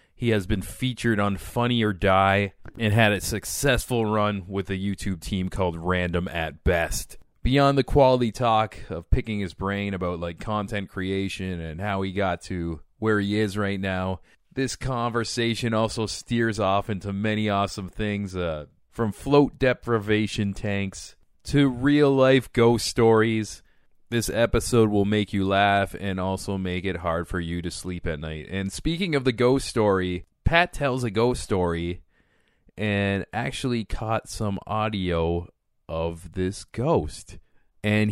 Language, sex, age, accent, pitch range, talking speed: English, male, 30-49, American, 95-120 Hz, 155 wpm